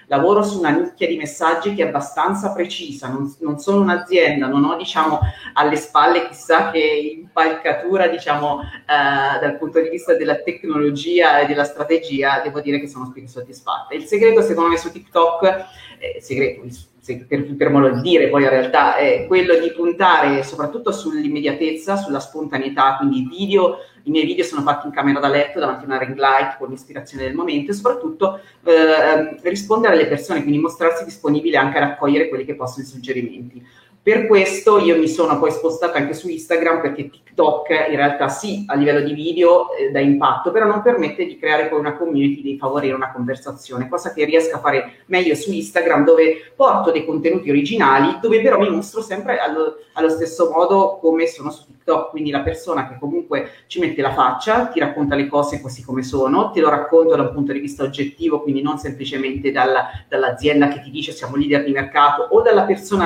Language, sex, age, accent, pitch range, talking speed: Italian, female, 30-49, native, 140-175 Hz, 190 wpm